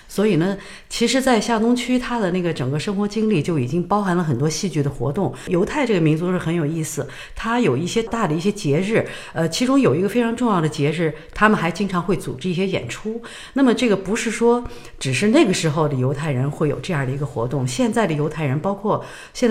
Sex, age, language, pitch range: female, 50-69, Chinese, 150-205 Hz